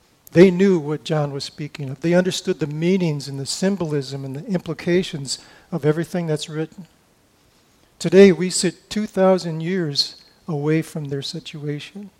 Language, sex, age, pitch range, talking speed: English, male, 50-69, 150-175 Hz, 150 wpm